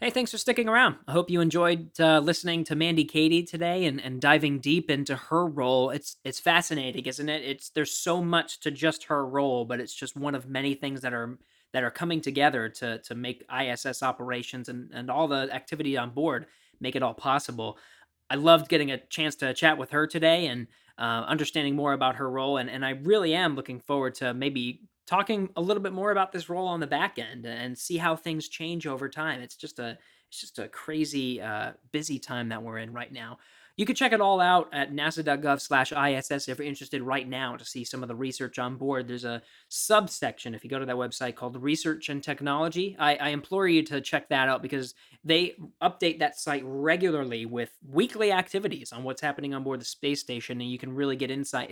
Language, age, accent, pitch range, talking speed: English, 20-39, American, 130-160 Hz, 220 wpm